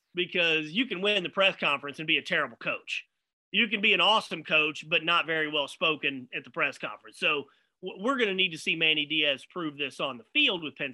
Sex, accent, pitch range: male, American, 150-200 Hz